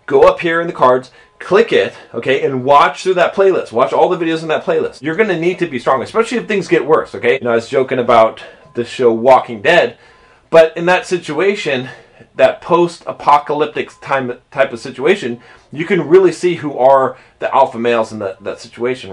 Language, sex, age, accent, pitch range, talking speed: English, male, 30-49, American, 125-180 Hz, 210 wpm